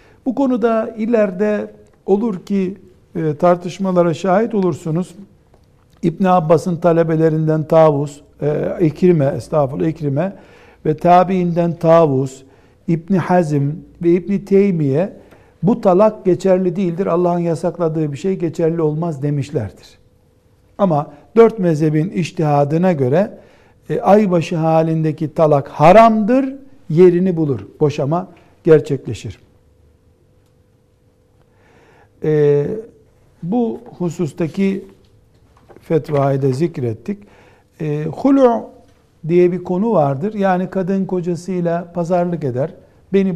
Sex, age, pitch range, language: male, 60-79, 145-190 Hz, Turkish